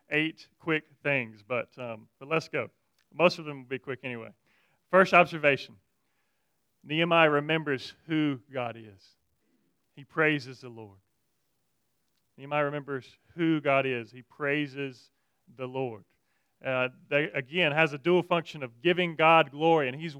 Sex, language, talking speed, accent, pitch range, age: male, English, 145 wpm, American, 130-165 Hz, 40-59